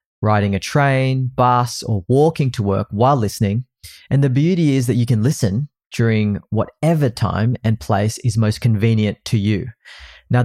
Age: 20-39